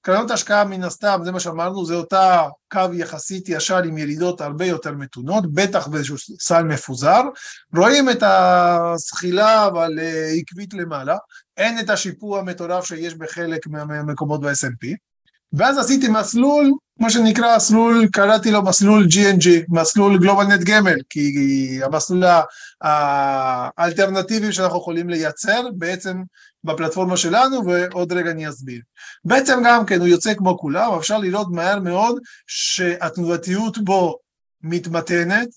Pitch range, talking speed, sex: 165-220 Hz, 130 wpm, male